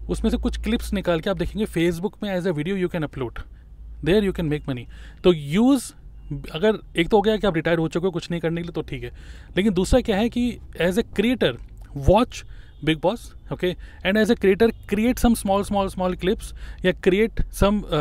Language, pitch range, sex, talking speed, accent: Hindi, 150-190 Hz, male, 220 wpm, native